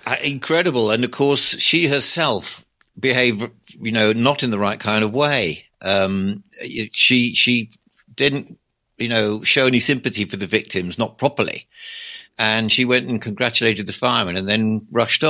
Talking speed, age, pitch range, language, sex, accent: 155 wpm, 60-79, 110-130 Hz, English, male, British